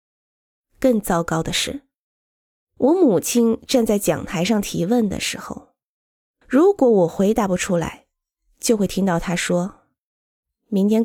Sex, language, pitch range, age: female, Chinese, 175-250 Hz, 20-39